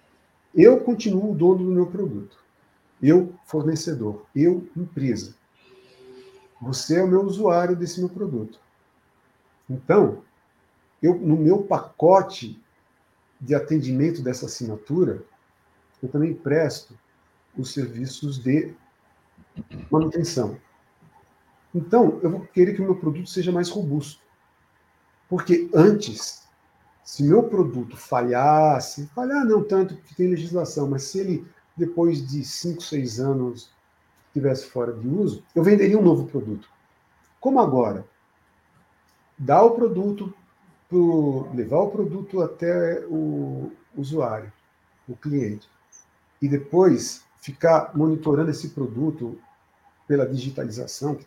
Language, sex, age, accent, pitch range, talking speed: Portuguese, male, 50-69, Brazilian, 120-175 Hz, 115 wpm